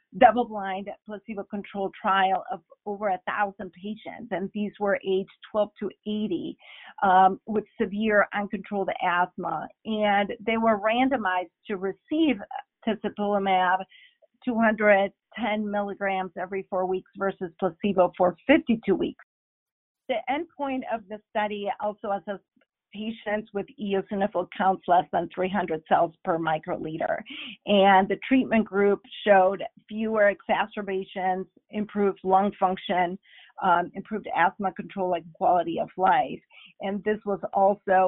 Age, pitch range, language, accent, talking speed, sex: 50-69, 185-215 Hz, English, American, 120 wpm, female